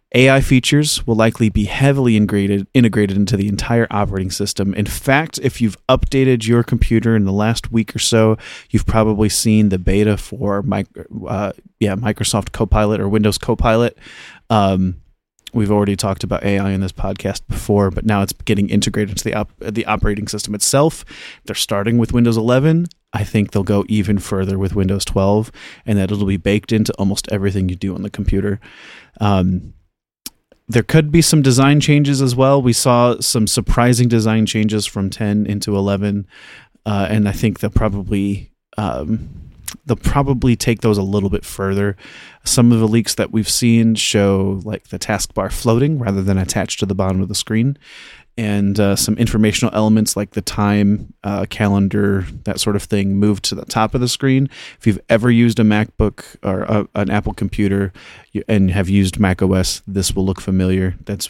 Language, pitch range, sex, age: English, 100-115 Hz, male, 30-49